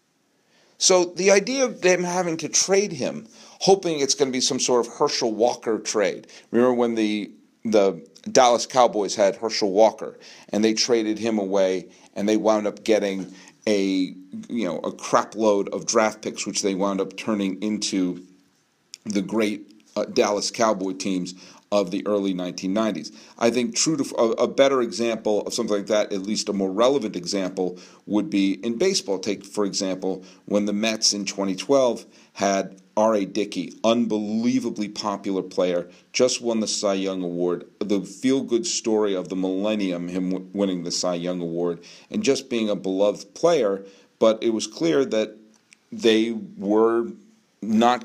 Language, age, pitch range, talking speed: English, 40-59, 95-120 Hz, 165 wpm